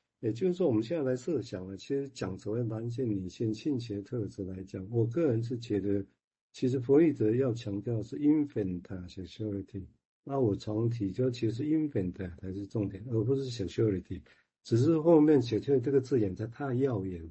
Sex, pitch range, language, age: male, 100-130 Hz, Chinese, 50-69